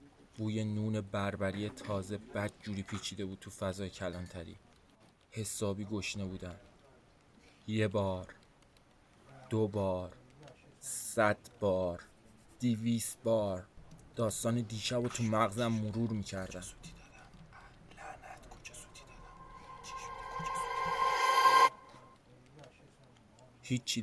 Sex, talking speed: male, 70 wpm